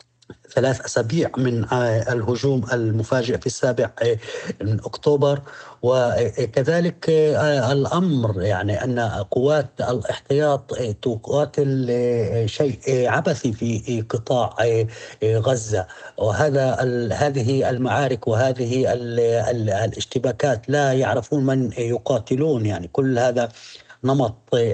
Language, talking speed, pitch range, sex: Arabic, 85 wpm, 115-135 Hz, male